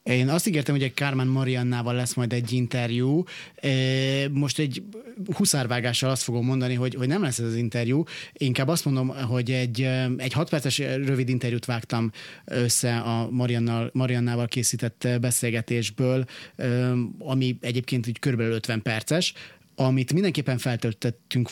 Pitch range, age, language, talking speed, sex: 120-140 Hz, 30-49, Hungarian, 130 wpm, male